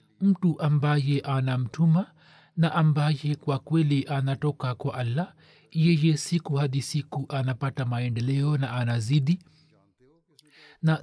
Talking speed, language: 105 wpm, Swahili